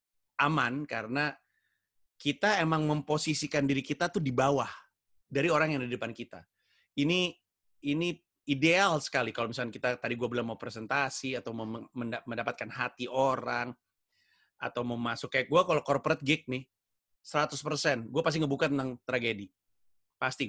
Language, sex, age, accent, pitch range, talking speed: Indonesian, male, 30-49, native, 120-155 Hz, 145 wpm